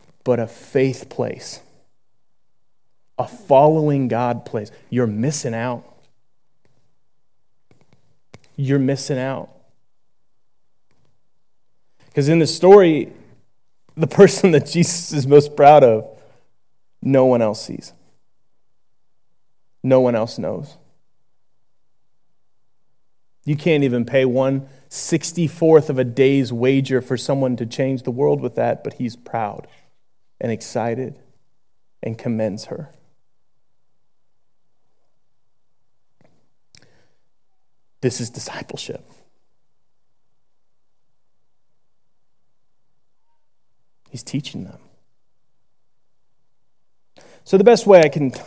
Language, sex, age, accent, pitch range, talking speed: English, male, 30-49, American, 125-150 Hz, 90 wpm